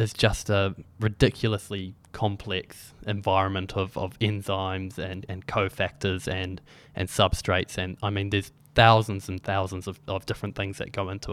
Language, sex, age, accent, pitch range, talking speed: English, male, 20-39, Australian, 95-110 Hz, 155 wpm